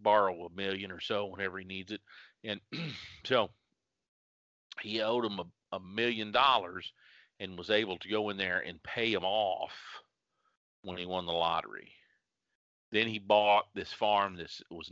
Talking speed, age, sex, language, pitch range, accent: 165 wpm, 40-59, male, English, 90-105 Hz, American